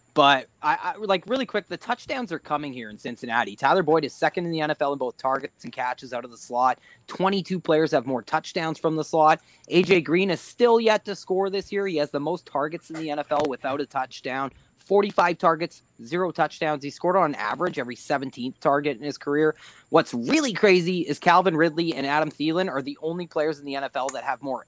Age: 20-39